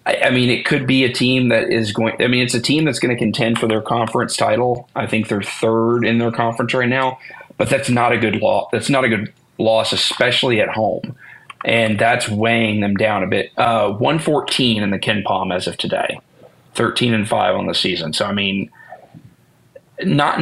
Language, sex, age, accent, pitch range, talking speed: English, male, 30-49, American, 110-130 Hz, 215 wpm